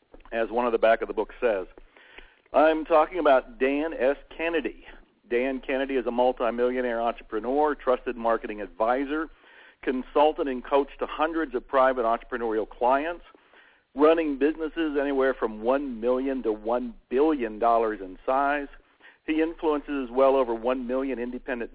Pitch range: 120-145 Hz